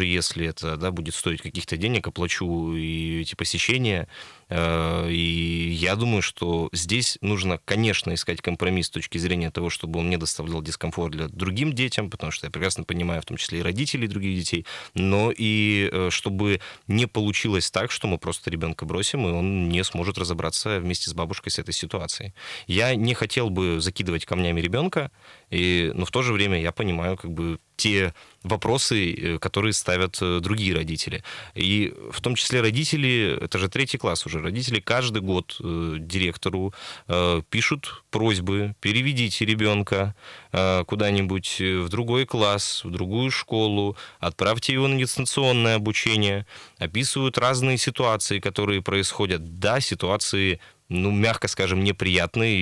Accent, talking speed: native, 150 wpm